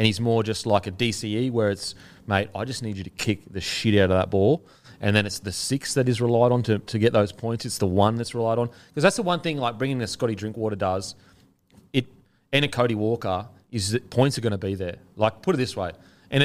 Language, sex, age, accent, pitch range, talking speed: English, male, 30-49, Australian, 95-120 Hz, 265 wpm